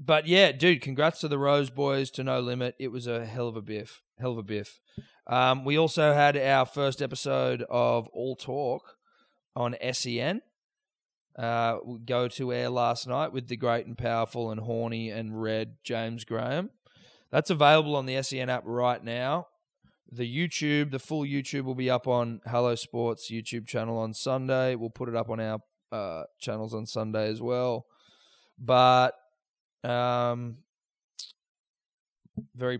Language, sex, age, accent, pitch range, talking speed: English, male, 20-39, Australian, 115-130 Hz, 165 wpm